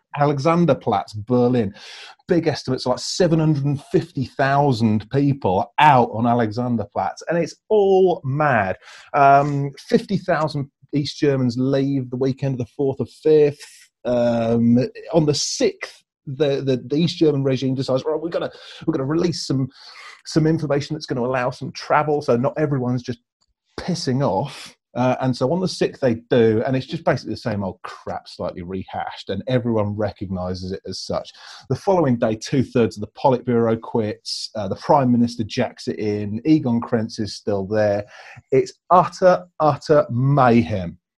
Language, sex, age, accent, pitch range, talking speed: English, male, 30-49, British, 120-150 Hz, 155 wpm